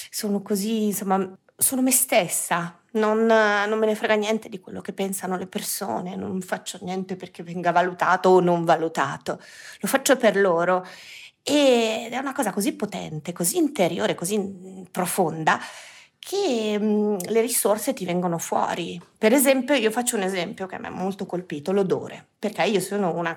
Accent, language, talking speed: native, Italian, 160 wpm